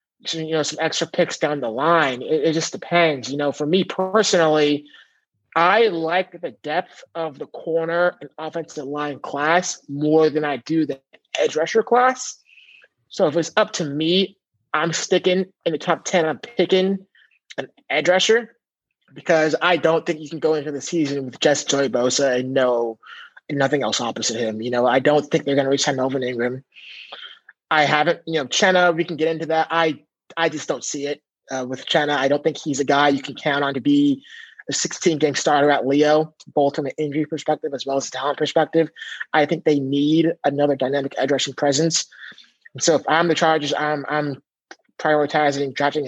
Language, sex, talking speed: English, male, 200 wpm